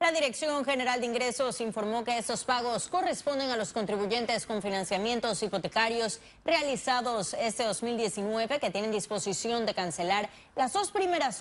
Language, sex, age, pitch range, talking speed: Spanish, female, 30-49, 210-265 Hz, 140 wpm